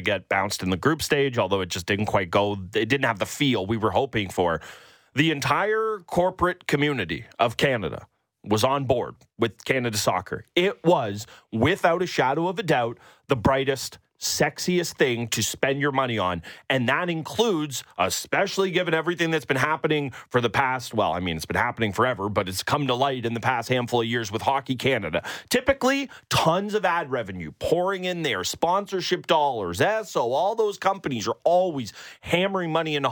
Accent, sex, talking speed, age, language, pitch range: American, male, 185 wpm, 30-49, English, 125-180 Hz